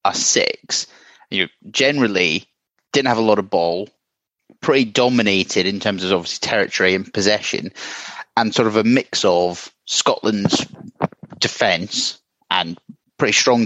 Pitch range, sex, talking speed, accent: 95-110 Hz, male, 130 wpm, British